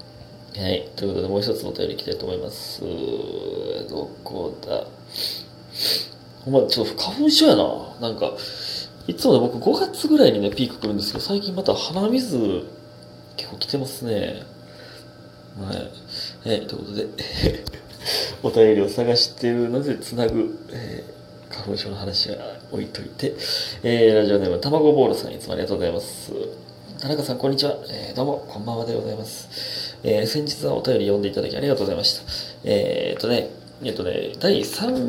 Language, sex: Japanese, male